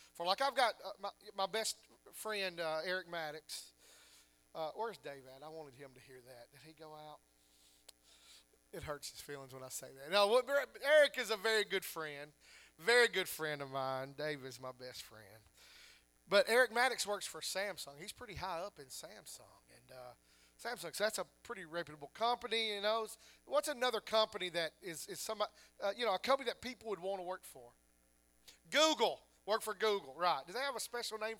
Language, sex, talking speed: English, male, 195 wpm